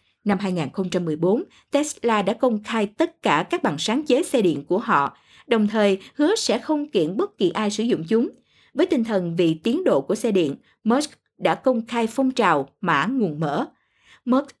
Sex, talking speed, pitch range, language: female, 195 wpm, 200-295 Hz, Vietnamese